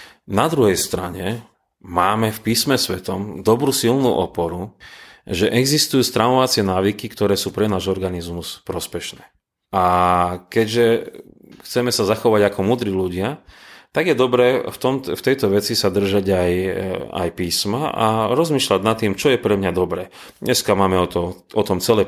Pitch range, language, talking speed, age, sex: 90-105 Hz, Slovak, 155 wpm, 30-49, male